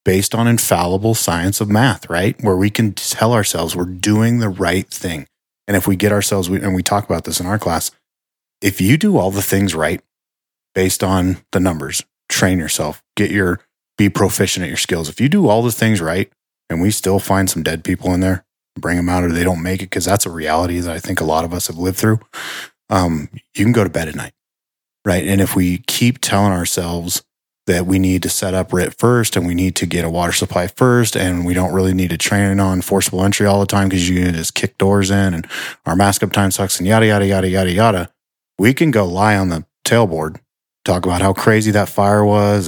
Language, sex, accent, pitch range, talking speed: English, male, American, 90-105 Hz, 230 wpm